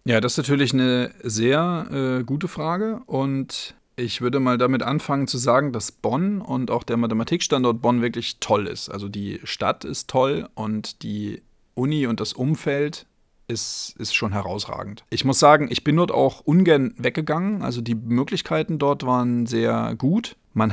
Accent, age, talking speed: German, 40-59, 170 wpm